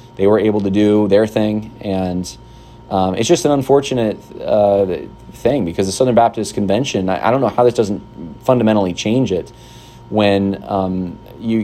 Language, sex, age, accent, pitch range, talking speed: English, male, 30-49, American, 95-115 Hz, 170 wpm